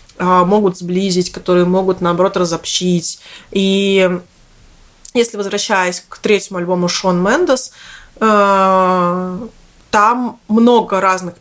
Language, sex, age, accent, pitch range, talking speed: Russian, female, 20-39, native, 180-210 Hz, 95 wpm